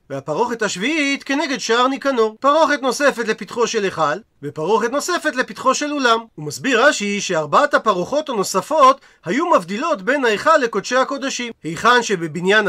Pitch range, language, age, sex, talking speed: 195-265 Hz, Hebrew, 40-59, male, 130 wpm